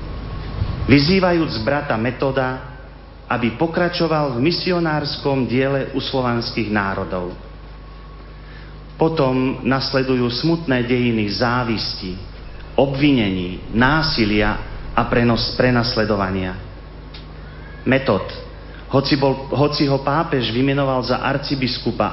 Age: 40-59